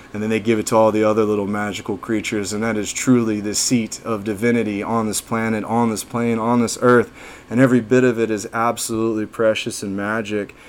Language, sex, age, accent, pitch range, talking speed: English, male, 20-39, American, 110-125 Hz, 220 wpm